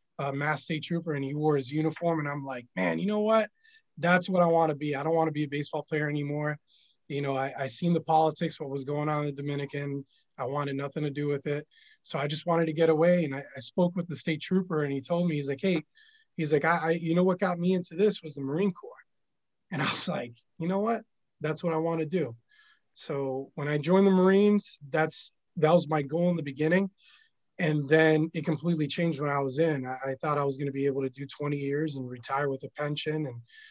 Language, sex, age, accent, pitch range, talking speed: English, male, 20-39, American, 135-165 Hz, 255 wpm